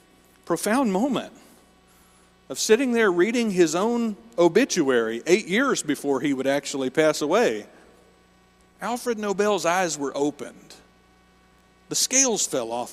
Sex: male